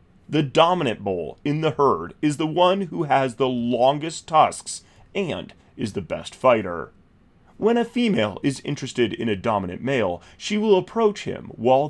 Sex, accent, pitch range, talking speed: male, American, 100-160 Hz, 165 wpm